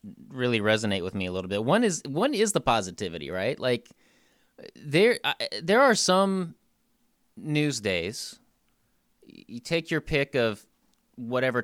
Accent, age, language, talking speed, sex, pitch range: American, 30-49, English, 145 wpm, male, 100-155 Hz